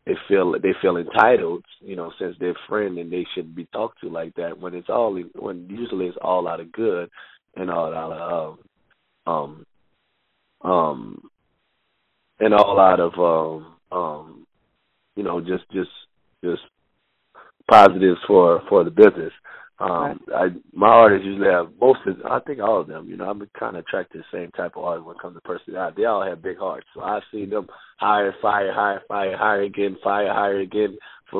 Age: 30-49